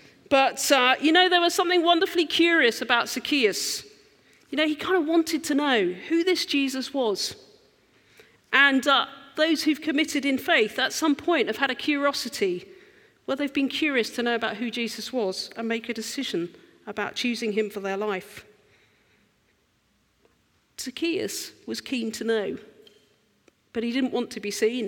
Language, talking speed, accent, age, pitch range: English, 165 wpm, British, 40-59, 220-290 Hz